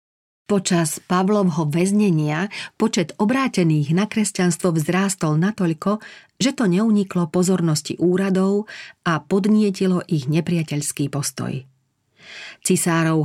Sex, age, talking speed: female, 40-59, 90 wpm